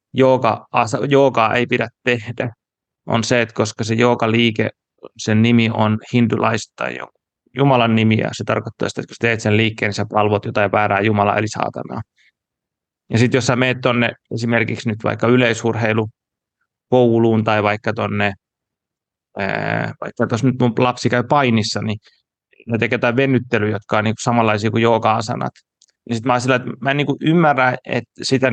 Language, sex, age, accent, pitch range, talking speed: Finnish, male, 30-49, native, 110-125 Hz, 160 wpm